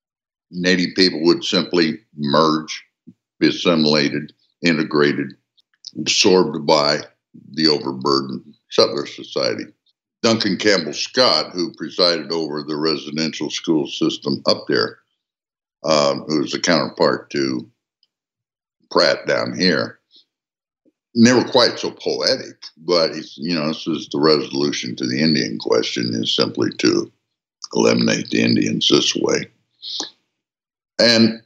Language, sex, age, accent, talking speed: English, male, 60-79, American, 115 wpm